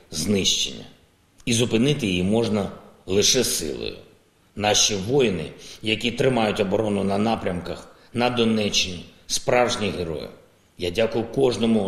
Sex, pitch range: male, 95-125 Hz